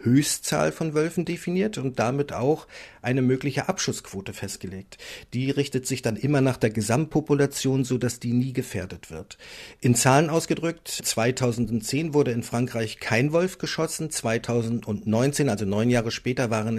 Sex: male